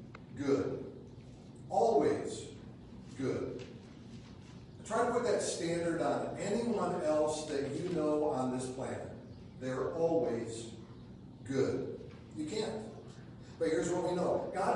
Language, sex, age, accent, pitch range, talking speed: English, male, 40-59, American, 145-170 Hz, 120 wpm